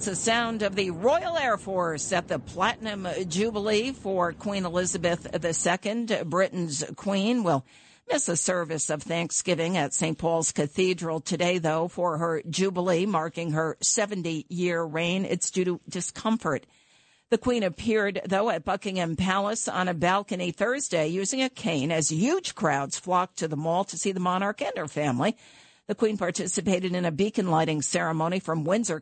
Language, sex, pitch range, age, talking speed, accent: English, female, 165-205 Hz, 50-69, 165 wpm, American